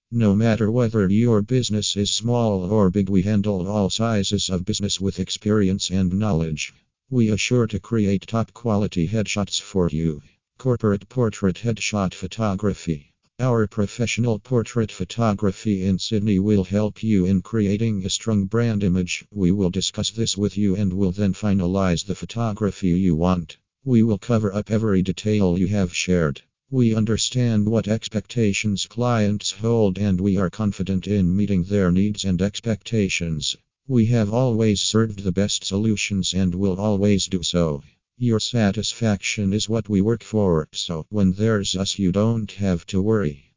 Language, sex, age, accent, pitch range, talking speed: English, male, 50-69, American, 95-110 Hz, 160 wpm